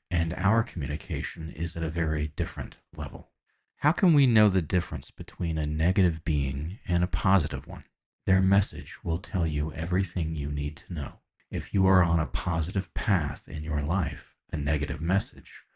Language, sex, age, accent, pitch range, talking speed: English, male, 40-59, American, 75-95 Hz, 175 wpm